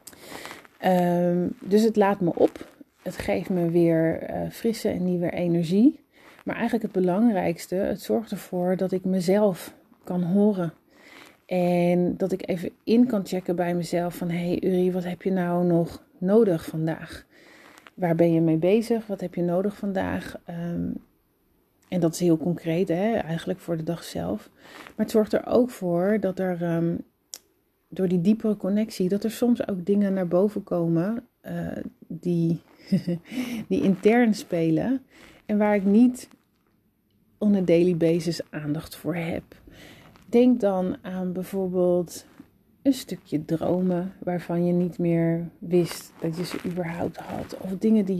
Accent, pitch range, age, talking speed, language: Dutch, 175-210 Hz, 30-49, 155 wpm, Dutch